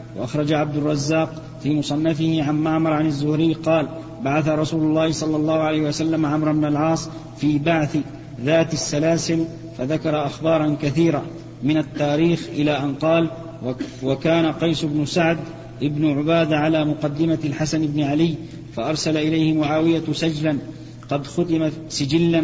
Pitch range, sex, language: 150-160 Hz, male, Arabic